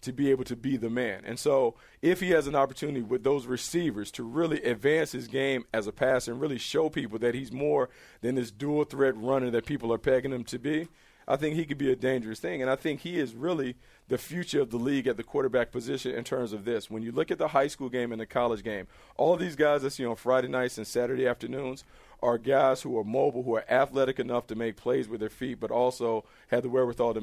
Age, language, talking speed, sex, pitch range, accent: 40-59, English, 250 wpm, male, 120-145 Hz, American